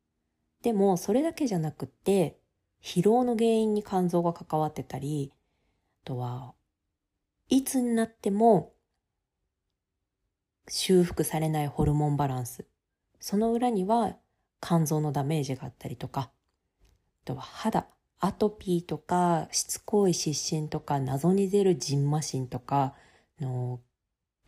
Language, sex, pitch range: Japanese, female, 130-185 Hz